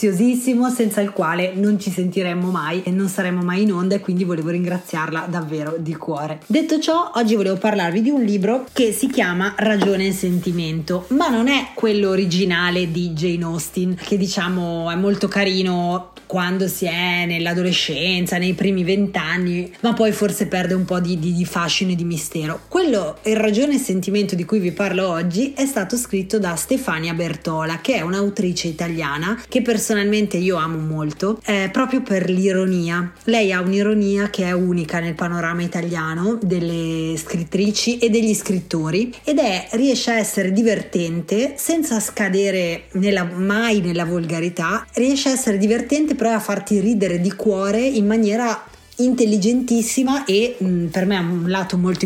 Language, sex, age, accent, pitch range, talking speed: Italian, female, 20-39, native, 175-215 Hz, 165 wpm